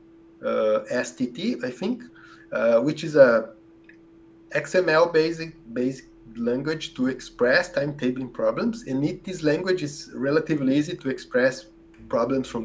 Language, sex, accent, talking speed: English, male, Brazilian, 130 wpm